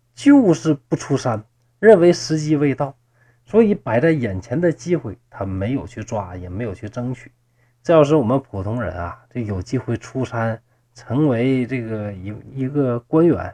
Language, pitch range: Chinese, 115-150 Hz